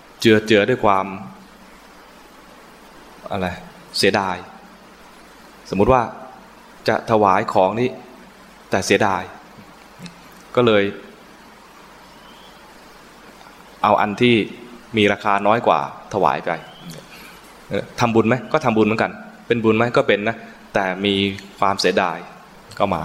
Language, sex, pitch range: English, male, 95-115 Hz